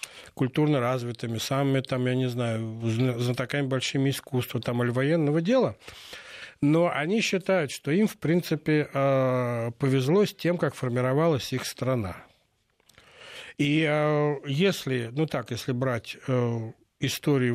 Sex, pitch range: male, 125-150 Hz